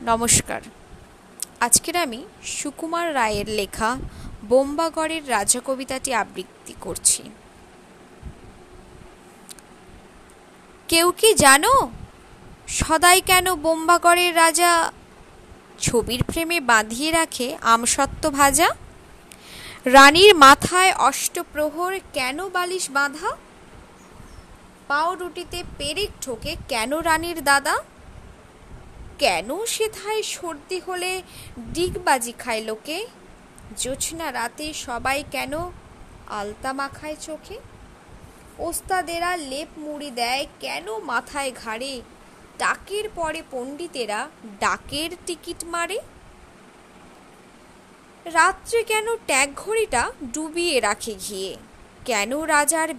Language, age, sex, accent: Bengali, 20-39, female, native